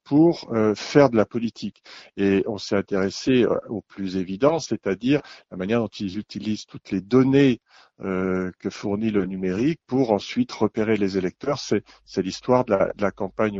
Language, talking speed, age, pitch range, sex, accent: French, 170 wpm, 50-69, 110-135 Hz, male, French